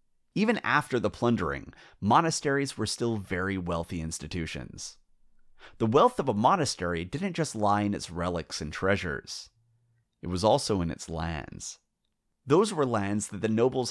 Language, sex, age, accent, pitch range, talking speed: English, male, 30-49, American, 85-115 Hz, 150 wpm